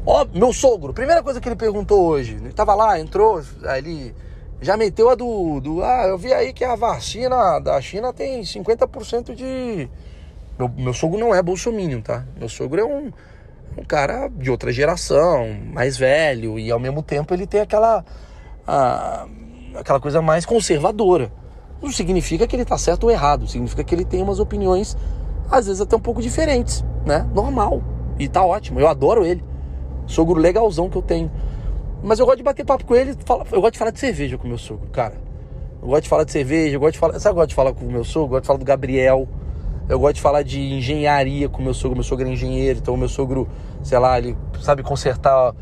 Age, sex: 20-39, male